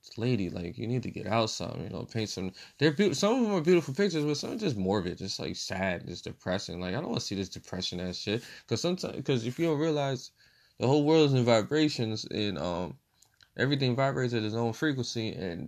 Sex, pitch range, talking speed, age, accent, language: male, 95-120 Hz, 235 wpm, 20-39, American, English